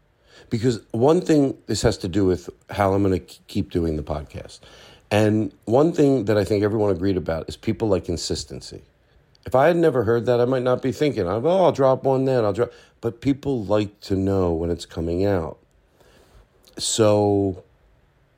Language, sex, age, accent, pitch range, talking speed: English, male, 50-69, American, 90-120 Hz, 185 wpm